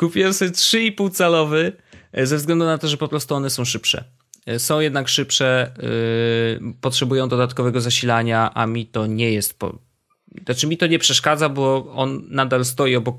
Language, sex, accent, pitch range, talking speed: Polish, male, native, 110-145 Hz, 155 wpm